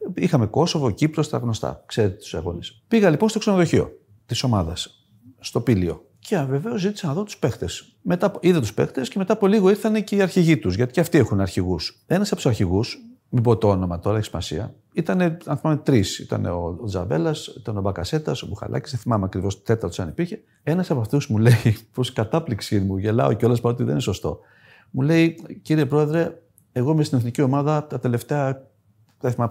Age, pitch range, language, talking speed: 40-59, 105-160 Hz, Greek, 195 wpm